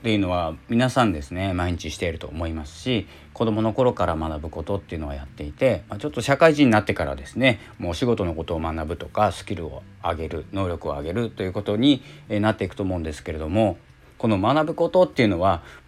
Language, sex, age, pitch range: Japanese, male, 40-59, 80-115 Hz